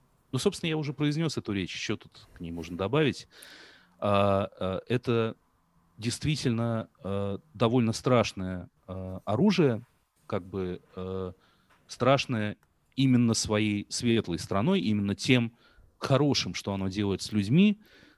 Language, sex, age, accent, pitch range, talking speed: Russian, male, 30-49, native, 95-130 Hz, 110 wpm